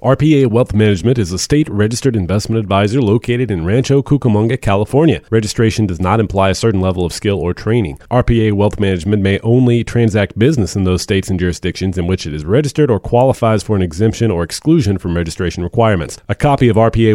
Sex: male